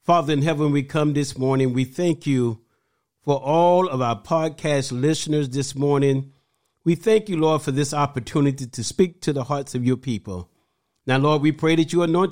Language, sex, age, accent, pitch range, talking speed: English, male, 50-69, American, 125-155 Hz, 195 wpm